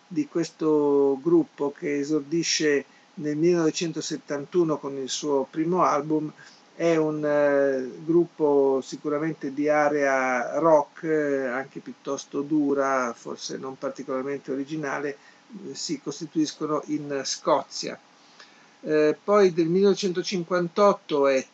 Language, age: Italian, 50-69